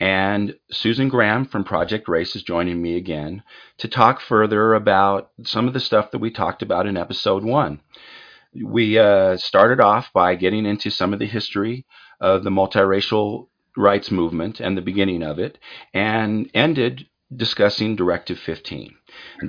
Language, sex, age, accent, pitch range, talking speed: English, male, 50-69, American, 95-115 Hz, 155 wpm